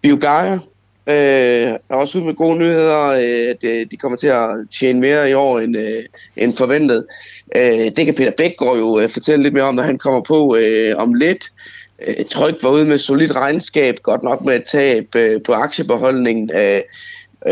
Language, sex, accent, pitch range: Danish, male, native, 120-155 Hz